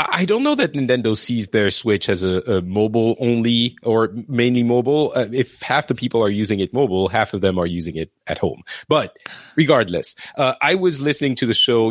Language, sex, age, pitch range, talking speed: English, male, 30-49, 105-130 Hz, 210 wpm